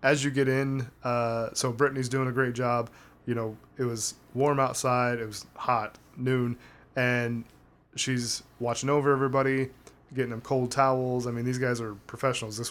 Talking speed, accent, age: 175 wpm, American, 20-39